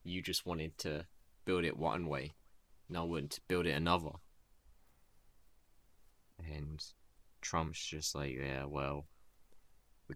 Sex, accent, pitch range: male, British, 75-90 Hz